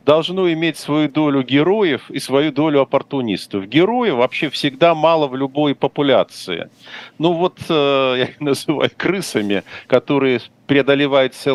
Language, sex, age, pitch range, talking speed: Russian, male, 50-69, 140-185 Hz, 130 wpm